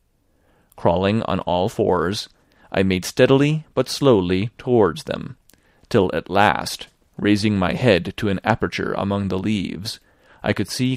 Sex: male